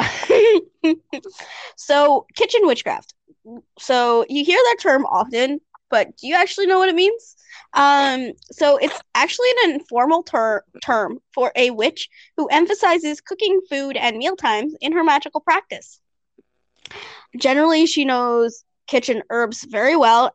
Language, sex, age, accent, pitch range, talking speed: English, female, 20-39, American, 220-325 Hz, 130 wpm